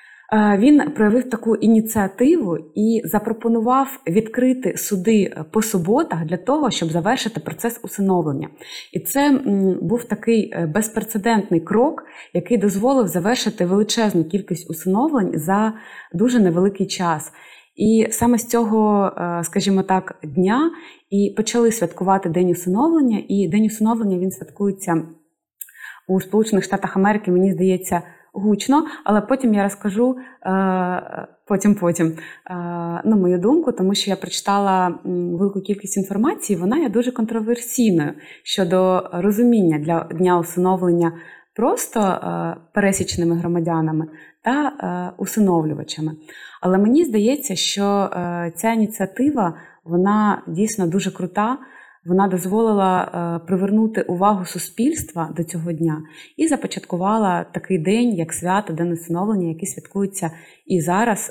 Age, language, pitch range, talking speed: 20-39, Ukrainian, 175-220 Hz, 115 wpm